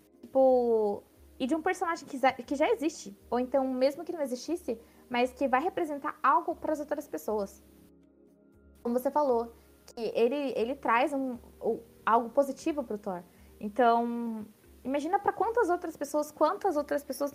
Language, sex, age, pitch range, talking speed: Portuguese, female, 20-39, 210-280 Hz, 160 wpm